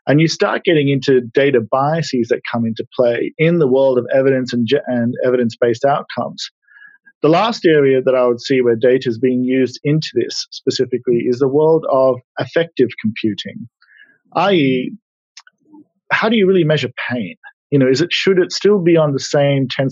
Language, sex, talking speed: English, male, 185 wpm